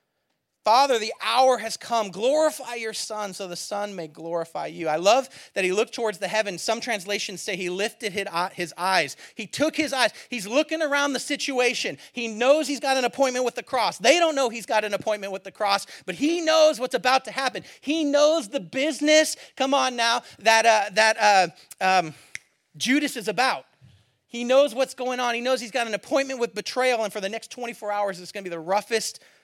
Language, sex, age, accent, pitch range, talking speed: English, male, 40-59, American, 185-270 Hz, 210 wpm